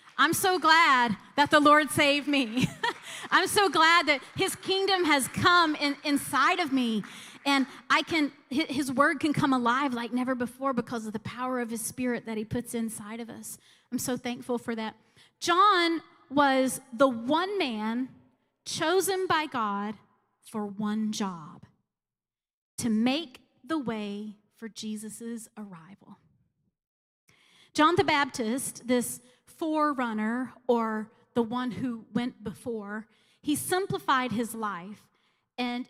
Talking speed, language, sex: 140 wpm, English, female